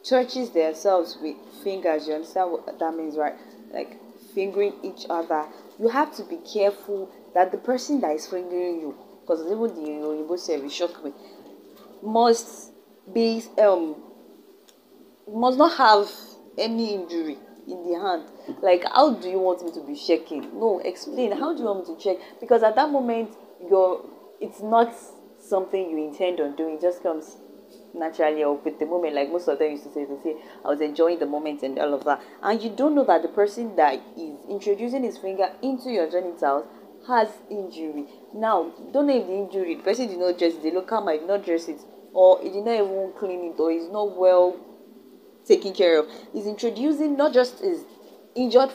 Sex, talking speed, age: female, 195 wpm, 20-39